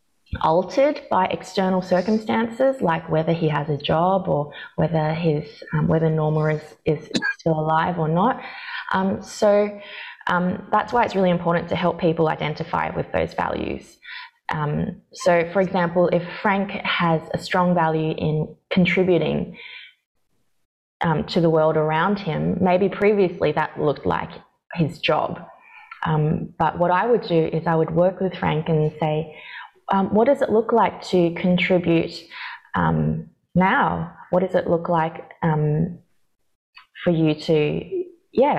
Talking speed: 150 wpm